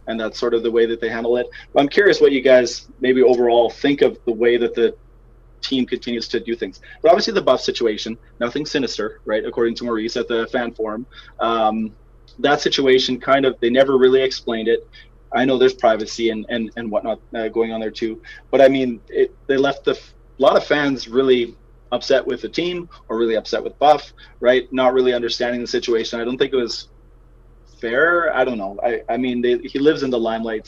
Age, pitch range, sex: 30-49, 115-135 Hz, male